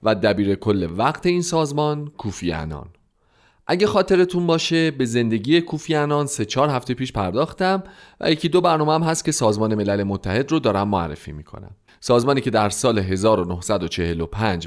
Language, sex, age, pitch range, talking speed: Persian, male, 40-59, 95-145 Hz, 150 wpm